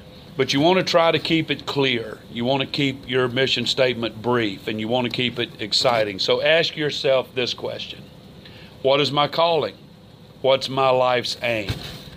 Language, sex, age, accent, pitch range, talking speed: English, male, 40-59, American, 120-145 Hz, 170 wpm